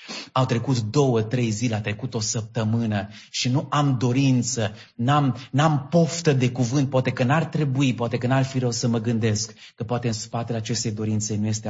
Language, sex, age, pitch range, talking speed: English, male, 30-49, 120-170 Hz, 190 wpm